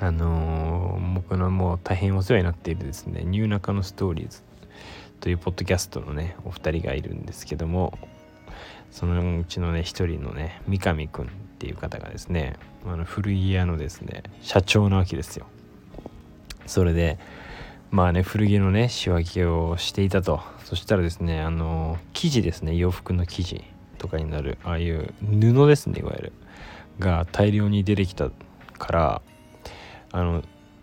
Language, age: Japanese, 20-39